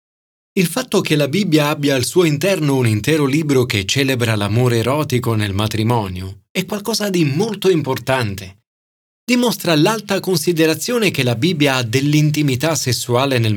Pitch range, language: 120-175 Hz, Italian